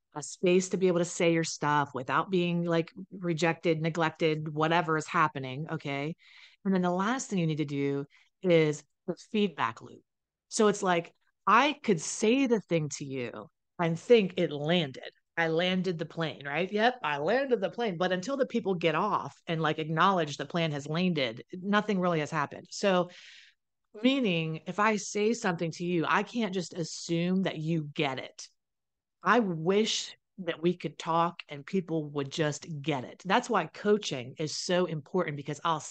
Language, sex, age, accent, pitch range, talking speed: English, female, 30-49, American, 155-195 Hz, 180 wpm